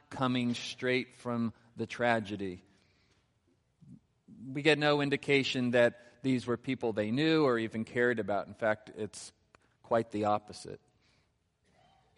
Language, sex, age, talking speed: English, male, 40-59, 125 wpm